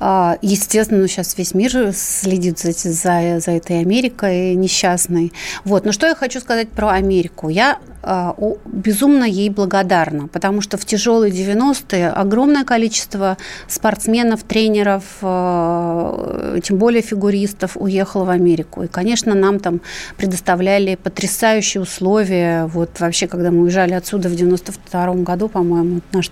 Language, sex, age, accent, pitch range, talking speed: Russian, female, 30-49, native, 180-215 Hz, 135 wpm